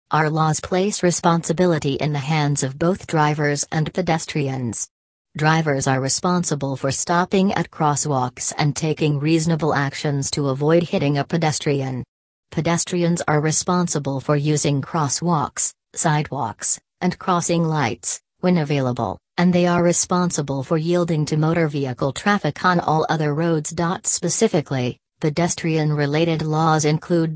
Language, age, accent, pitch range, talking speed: English, 40-59, American, 145-175 Hz, 125 wpm